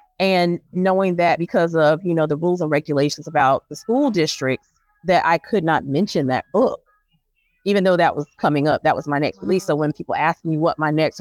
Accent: American